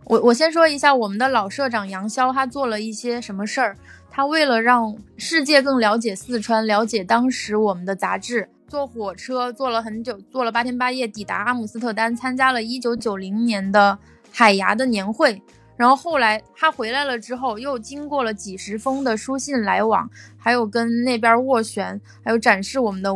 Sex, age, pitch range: female, 20-39, 210-255 Hz